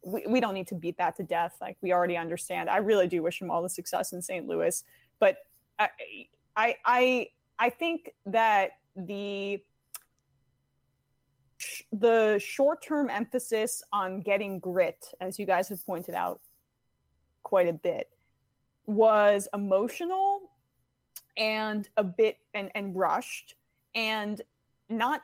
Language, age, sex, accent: English, 20-39, female, American